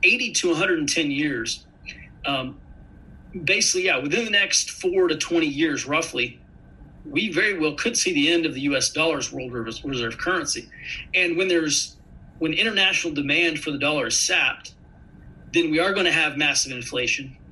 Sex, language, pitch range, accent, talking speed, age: male, English, 140-235 Hz, American, 165 wpm, 30-49